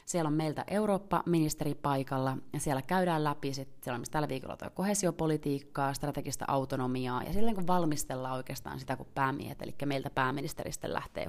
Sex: female